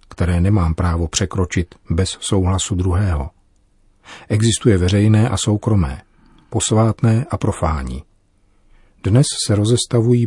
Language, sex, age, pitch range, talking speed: Czech, male, 40-59, 90-105 Hz, 100 wpm